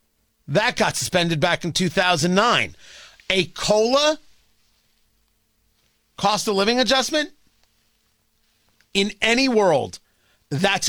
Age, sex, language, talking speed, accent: 40-59, male, English, 75 wpm, American